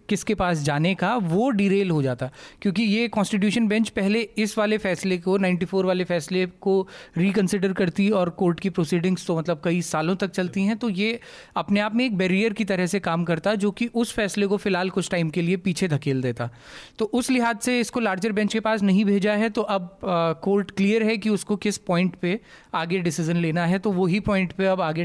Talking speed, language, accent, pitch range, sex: 220 wpm, Hindi, native, 180-225 Hz, male